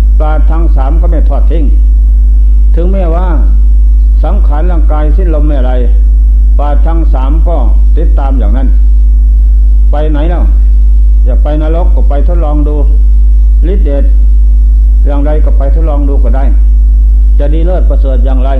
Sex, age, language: male, 60-79, Thai